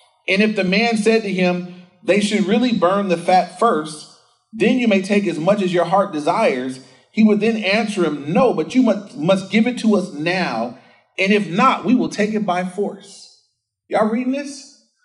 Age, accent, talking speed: 40-59, American, 200 wpm